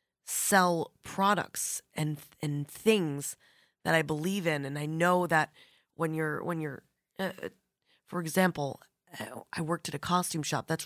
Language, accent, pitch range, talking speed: English, American, 160-195 Hz, 150 wpm